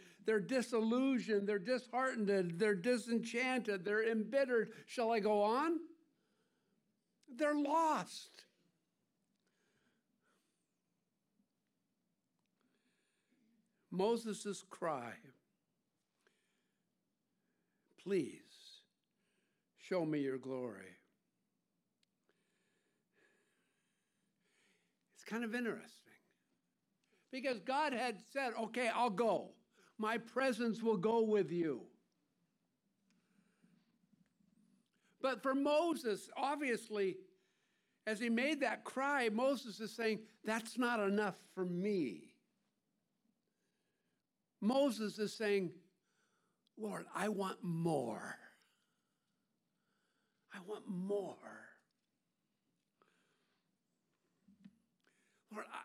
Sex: male